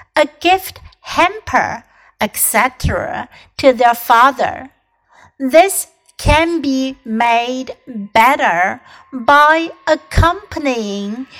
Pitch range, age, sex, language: 235-315 Hz, 60-79, female, Chinese